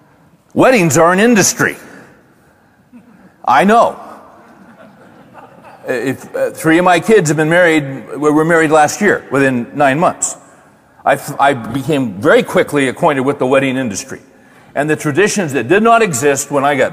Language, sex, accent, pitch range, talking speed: English, male, American, 130-165 Hz, 150 wpm